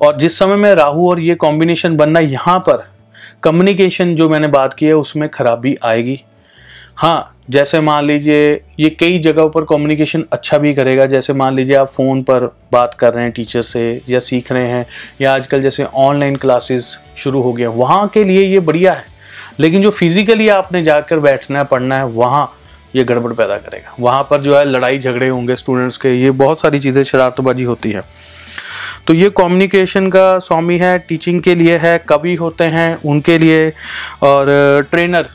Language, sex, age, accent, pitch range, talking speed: Hindi, male, 30-49, native, 130-160 Hz, 185 wpm